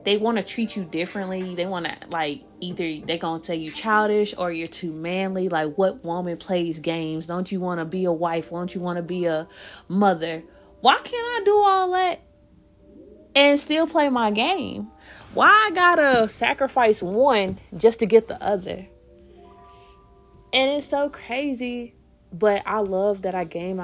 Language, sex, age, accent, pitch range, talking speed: English, female, 20-39, American, 165-205 Hz, 180 wpm